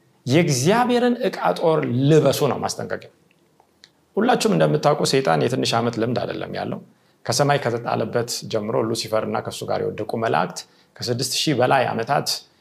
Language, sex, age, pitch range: Amharic, male, 30-49, 125-170 Hz